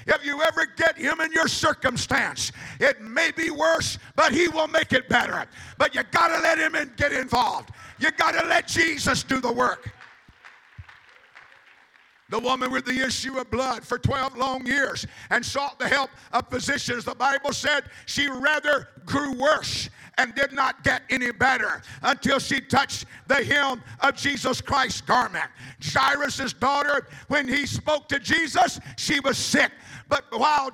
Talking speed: 170 wpm